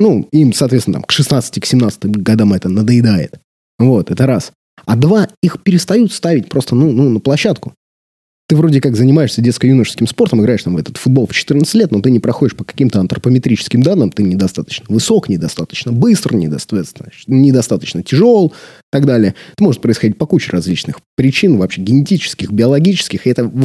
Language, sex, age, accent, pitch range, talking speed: Russian, male, 20-39, native, 110-155 Hz, 165 wpm